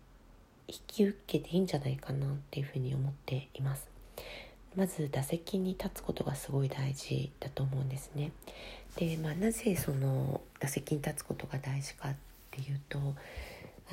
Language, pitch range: Japanese, 135-175 Hz